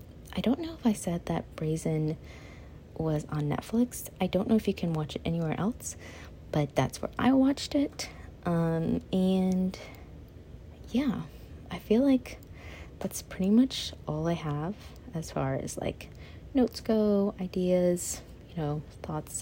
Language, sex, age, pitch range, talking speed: English, female, 30-49, 130-180 Hz, 150 wpm